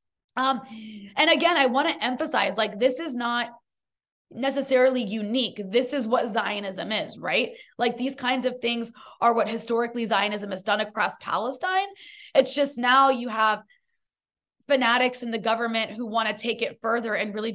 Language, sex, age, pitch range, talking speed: English, female, 20-39, 230-295 Hz, 170 wpm